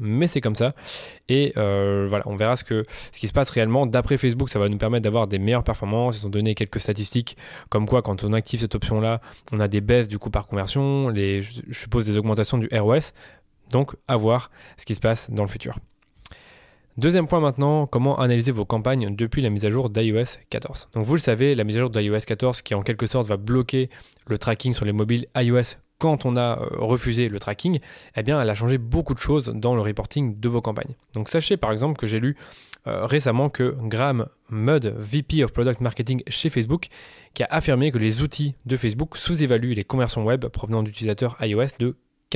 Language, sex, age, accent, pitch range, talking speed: French, male, 20-39, French, 110-135 Hz, 215 wpm